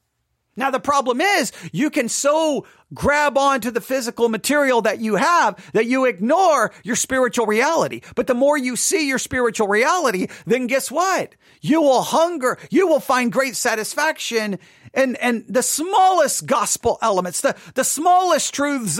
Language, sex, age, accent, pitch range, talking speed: English, male, 40-59, American, 175-255 Hz, 155 wpm